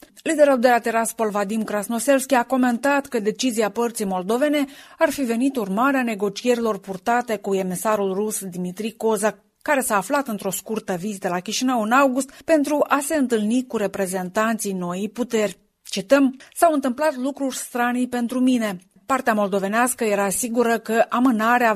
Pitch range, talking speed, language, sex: 210-255 Hz, 150 wpm, Romanian, female